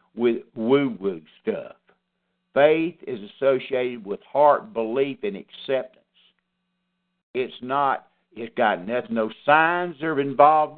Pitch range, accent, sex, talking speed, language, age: 125-195 Hz, American, male, 110 wpm, English, 60-79